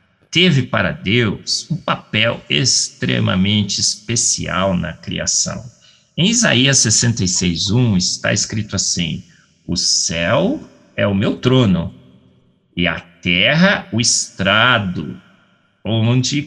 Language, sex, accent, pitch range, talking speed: Portuguese, male, Brazilian, 95-120 Hz, 100 wpm